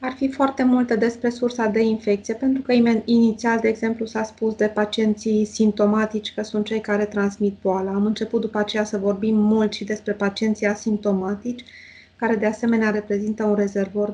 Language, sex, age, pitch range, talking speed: Romanian, female, 20-39, 205-230 Hz, 175 wpm